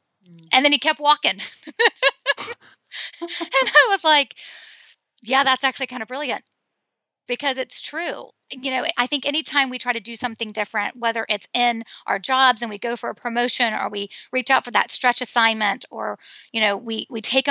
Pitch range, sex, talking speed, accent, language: 220-265 Hz, female, 185 wpm, American, English